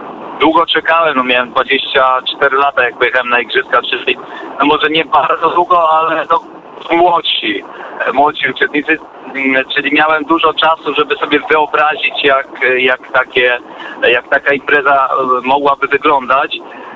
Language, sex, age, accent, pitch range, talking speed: Polish, male, 40-59, native, 135-170 Hz, 125 wpm